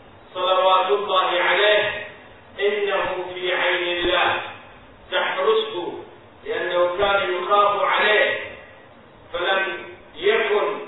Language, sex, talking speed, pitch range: Arabic, male, 75 wpm, 175-210 Hz